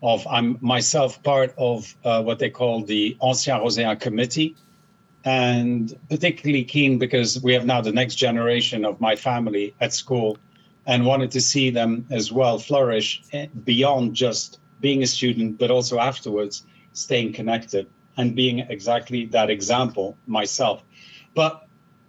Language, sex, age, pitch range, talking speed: English, male, 50-69, 120-145 Hz, 145 wpm